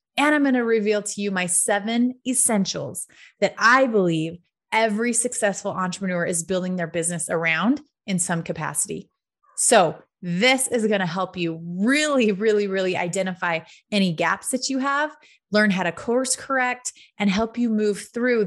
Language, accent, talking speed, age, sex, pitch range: English, American, 160 wpm, 30-49, female, 180-230 Hz